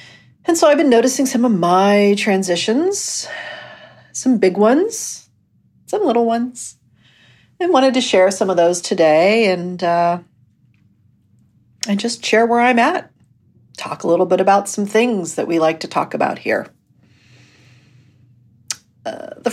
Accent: American